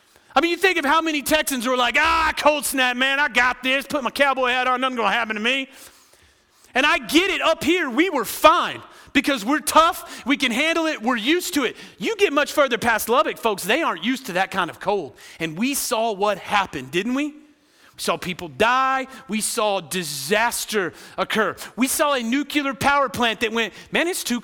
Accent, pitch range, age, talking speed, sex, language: American, 190-280 Hz, 30-49, 215 wpm, male, English